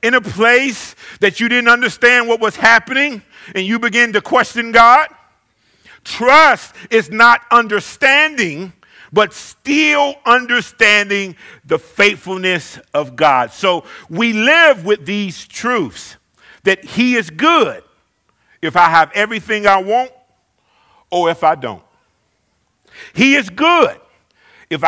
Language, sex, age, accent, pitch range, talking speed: English, male, 50-69, American, 150-235 Hz, 125 wpm